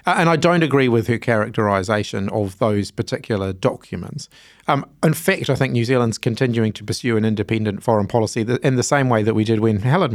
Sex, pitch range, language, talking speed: male, 110-135 Hz, English, 205 wpm